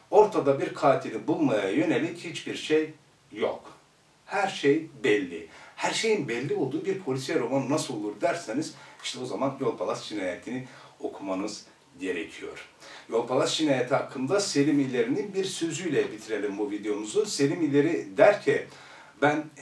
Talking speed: 140 wpm